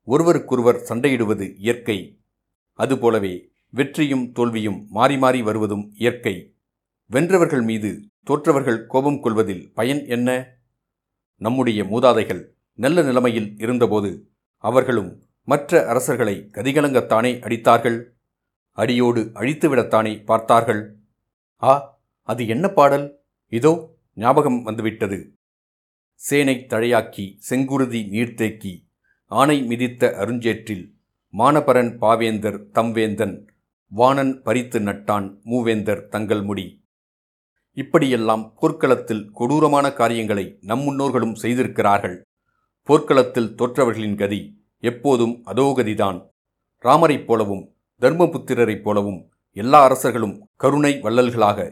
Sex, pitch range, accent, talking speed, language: male, 105-130 Hz, native, 85 wpm, Tamil